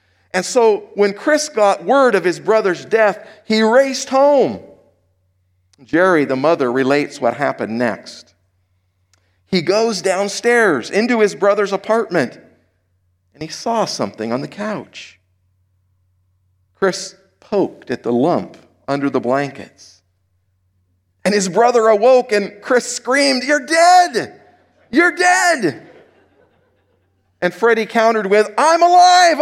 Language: English